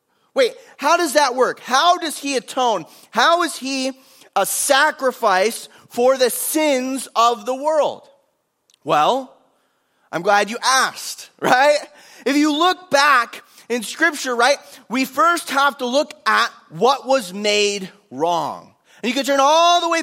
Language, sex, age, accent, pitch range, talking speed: English, male, 30-49, American, 205-285 Hz, 150 wpm